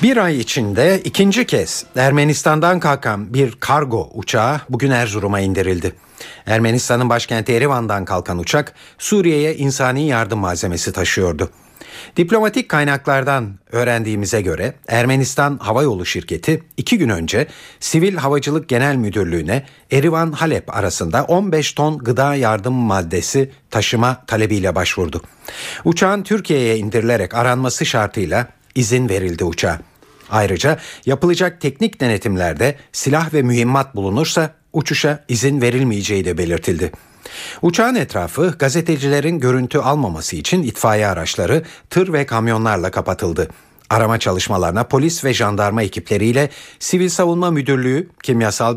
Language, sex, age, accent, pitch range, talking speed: Turkish, male, 50-69, native, 105-150 Hz, 110 wpm